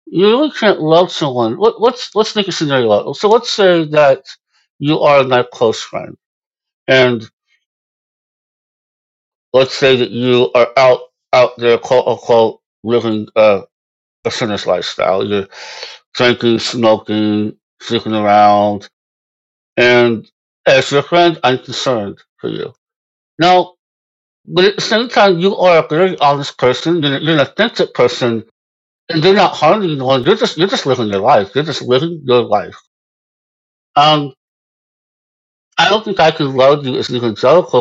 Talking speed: 150 wpm